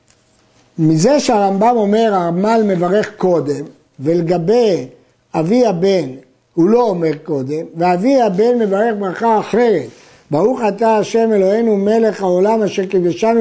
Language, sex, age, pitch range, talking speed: Hebrew, male, 50-69, 175-230 Hz, 115 wpm